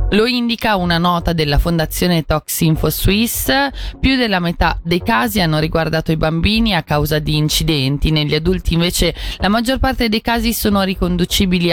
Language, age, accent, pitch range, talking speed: Italian, 20-39, native, 160-210 Hz, 160 wpm